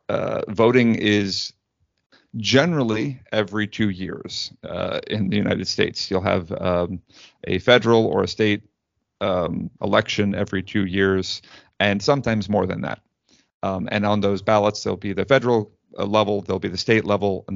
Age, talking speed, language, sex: 30-49, 155 wpm, English, male